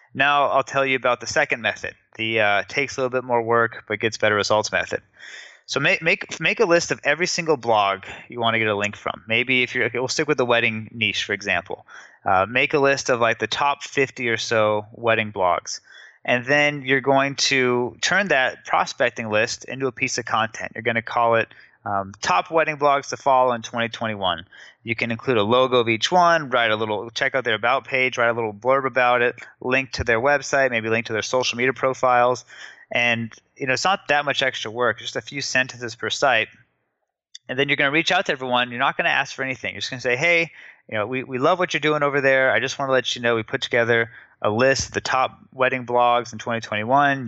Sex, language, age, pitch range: male, English, 20-39, 115-135 Hz